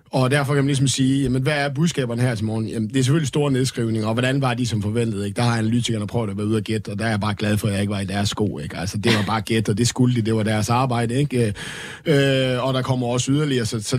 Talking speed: 300 wpm